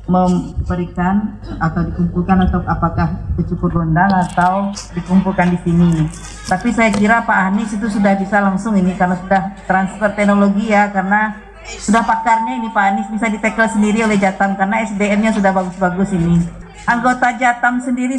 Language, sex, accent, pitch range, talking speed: Indonesian, female, native, 180-220 Hz, 150 wpm